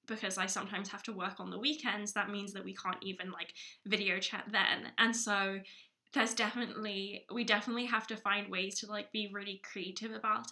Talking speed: 200 wpm